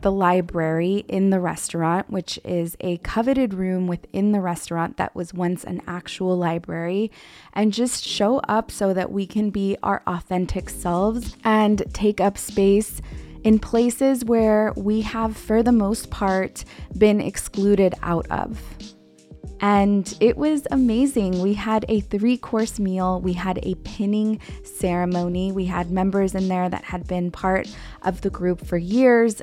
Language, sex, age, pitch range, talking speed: English, female, 20-39, 180-220 Hz, 155 wpm